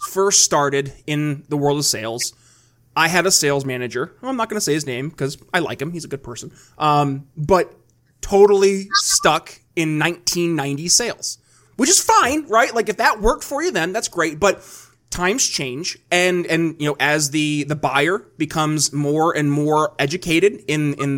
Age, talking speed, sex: 20-39, 185 wpm, male